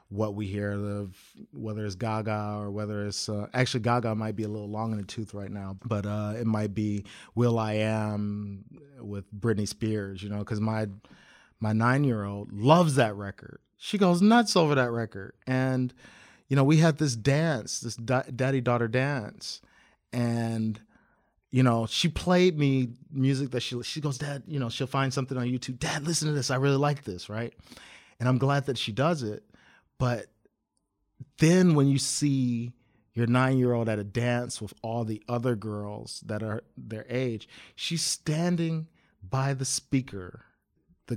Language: English